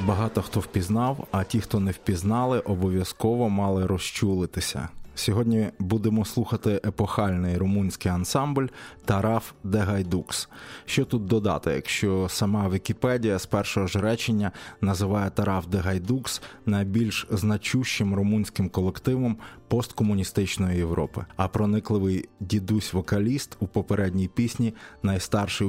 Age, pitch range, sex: 20-39, 95-115 Hz, male